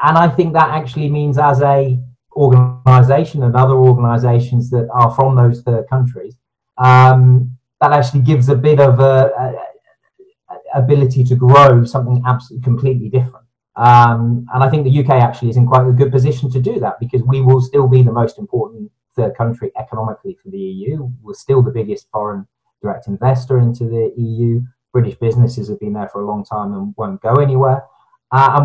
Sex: male